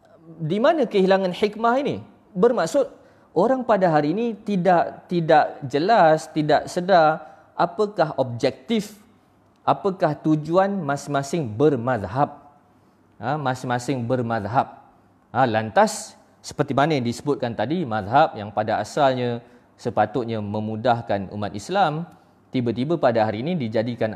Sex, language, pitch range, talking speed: male, Malay, 110-165 Hz, 110 wpm